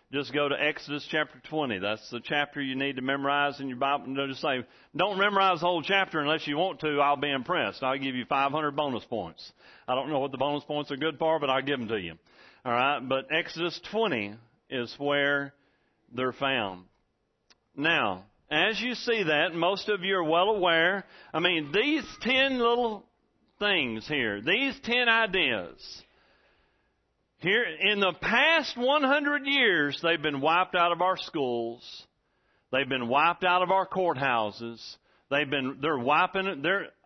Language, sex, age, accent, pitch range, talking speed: English, male, 40-59, American, 140-210 Hz, 175 wpm